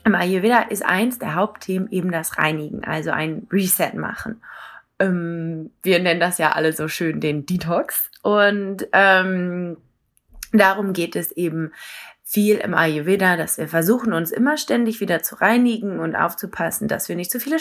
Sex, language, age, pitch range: female, English, 20-39, 180-225 Hz